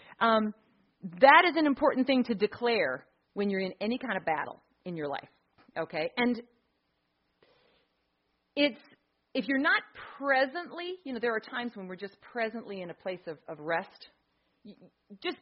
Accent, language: American, English